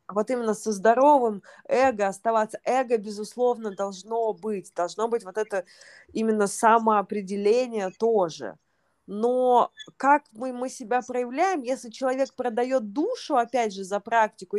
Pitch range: 210-255 Hz